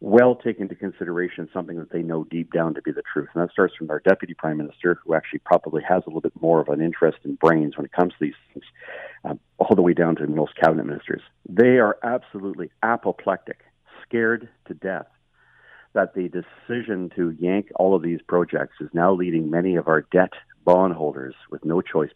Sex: male